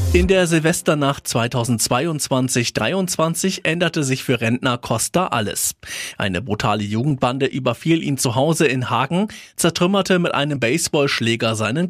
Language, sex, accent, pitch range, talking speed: German, male, German, 125-175 Hz, 120 wpm